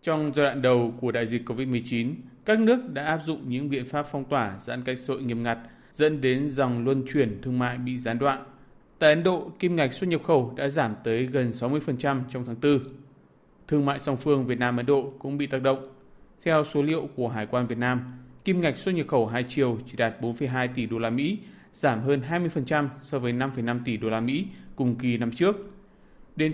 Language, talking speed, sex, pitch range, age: Vietnamese, 220 wpm, male, 120-145 Hz, 20-39